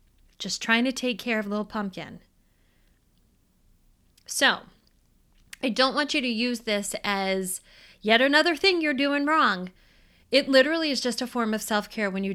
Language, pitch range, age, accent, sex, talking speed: English, 195-255 Hz, 30-49, American, female, 165 wpm